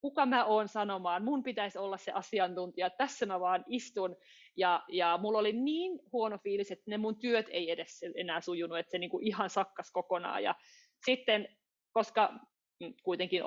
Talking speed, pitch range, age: 170 wpm, 180-230 Hz, 30-49